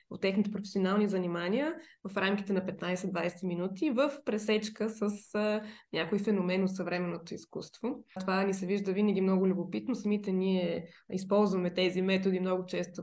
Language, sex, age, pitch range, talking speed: Bulgarian, female, 20-39, 190-230 Hz, 145 wpm